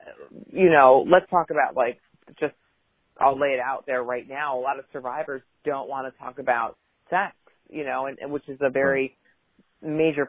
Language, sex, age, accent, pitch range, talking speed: English, female, 30-49, American, 130-150 Hz, 190 wpm